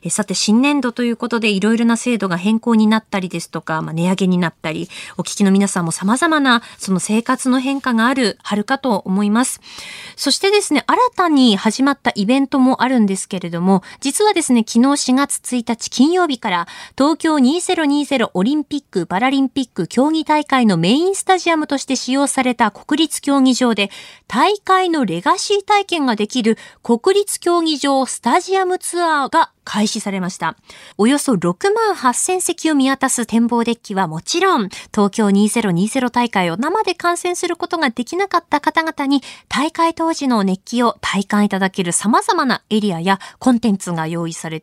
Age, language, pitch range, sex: 20-39, Japanese, 205-310 Hz, female